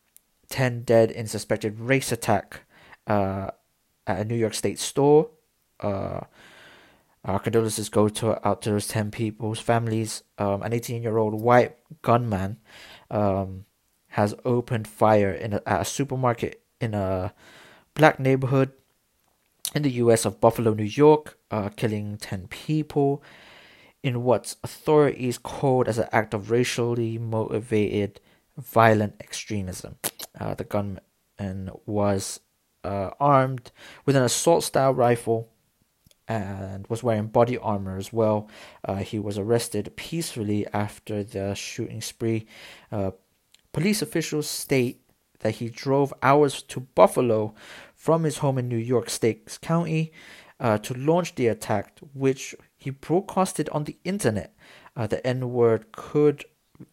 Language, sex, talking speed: English, male, 135 wpm